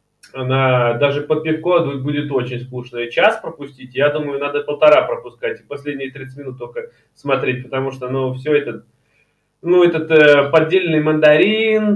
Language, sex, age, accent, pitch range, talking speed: Russian, male, 20-39, native, 130-170 Hz, 155 wpm